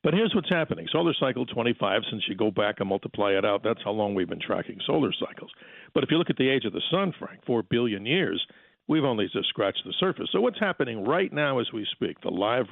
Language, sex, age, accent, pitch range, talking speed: English, male, 50-69, American, 115-150 Hz, 250 wpm